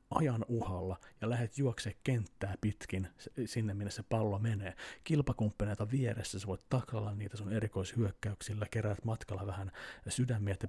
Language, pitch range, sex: Finnish, 100-125 Hz, male